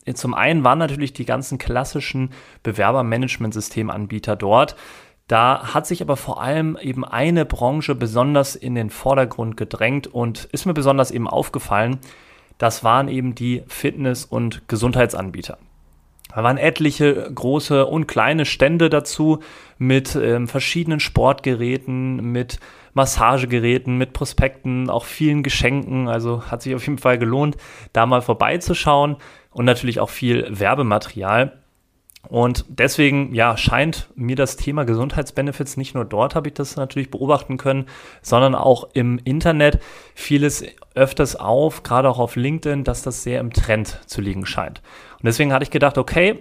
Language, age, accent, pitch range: German, 30-49, German, 120-145 Hz